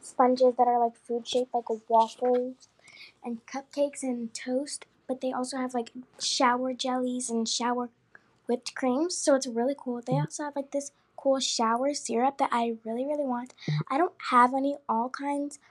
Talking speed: 175 wpm